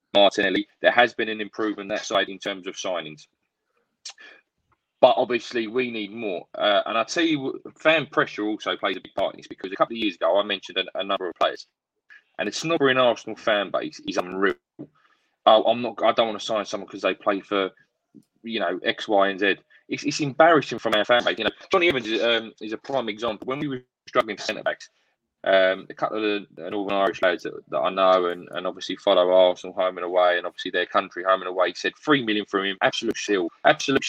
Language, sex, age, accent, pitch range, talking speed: English, male, 20-39, British, 100-155 Hz, 225 wpm